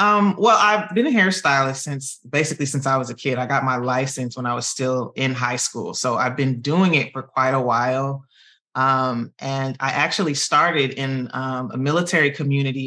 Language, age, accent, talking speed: English, 20-39, American, 200 wpm